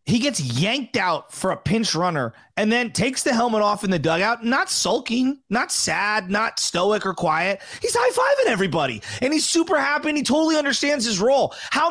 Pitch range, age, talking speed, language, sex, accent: 190-255 Hz, 30-49, 200 wpm, English, male, American